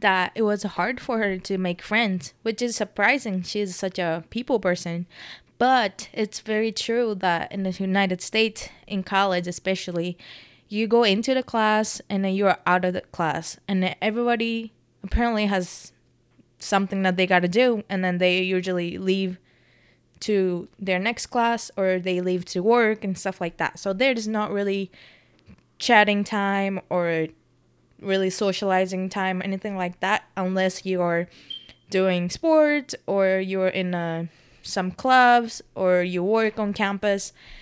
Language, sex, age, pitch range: Japanese, female, 20-39, 180-215 Hz